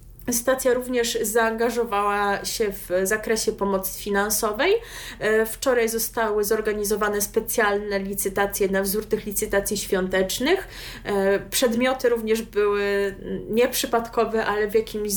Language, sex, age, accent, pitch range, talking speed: Polish, female, 20-39, native, 210-250 Hz, 100 wpm